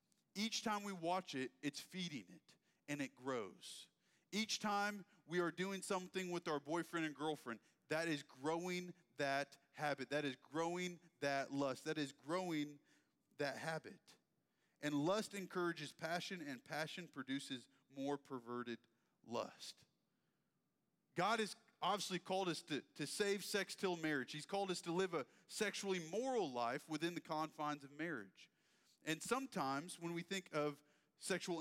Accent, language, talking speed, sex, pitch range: American, English, 150 wpm, male, 140-180 Hz